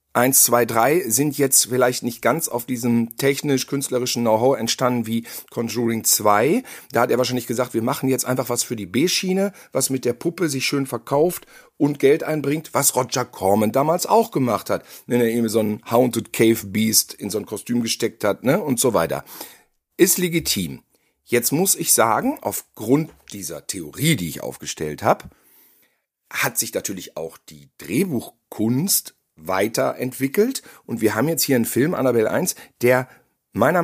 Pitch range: 120-150 Hz